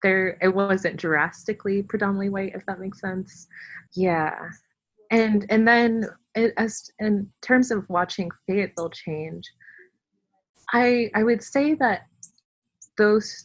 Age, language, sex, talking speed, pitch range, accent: 20-39, English, female, 125 wpm, 165-210 Hz, American